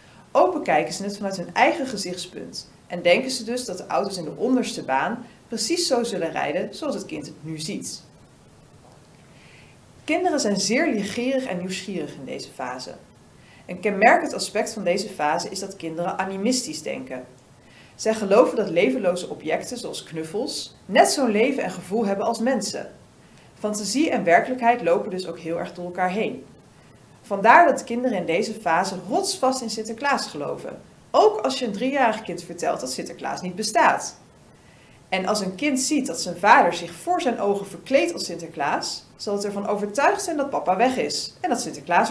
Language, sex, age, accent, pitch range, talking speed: Dutch, female, 40-59, Dutch, 175-245 Hz, 175 wpm